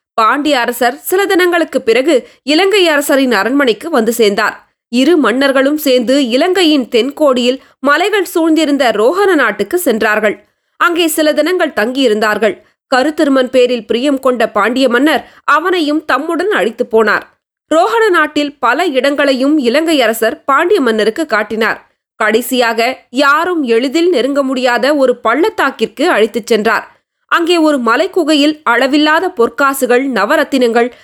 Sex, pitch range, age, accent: female, 240-315 Hz, 20-39, native